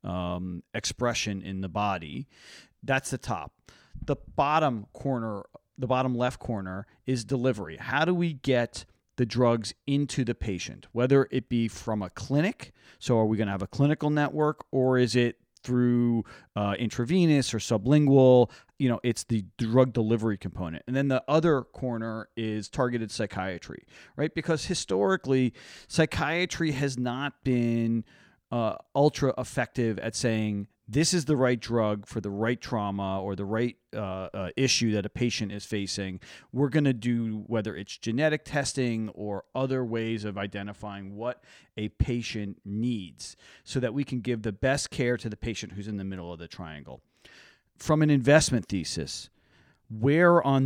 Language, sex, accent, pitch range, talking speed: English, male, American, 105-130 Hz, 160 wpm